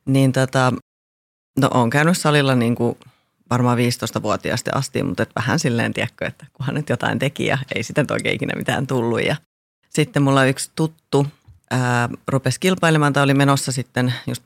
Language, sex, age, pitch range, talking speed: Finnish, female, 30-49, 125-155 Hz, 165 wpm